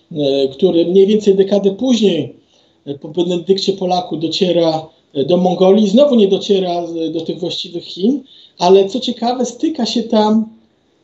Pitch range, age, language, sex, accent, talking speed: 175-215 Hz, 50-69, Polish, male, native, 130 wpm